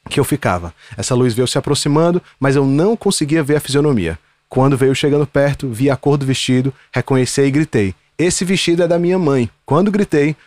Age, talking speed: 20-39, 200 wpm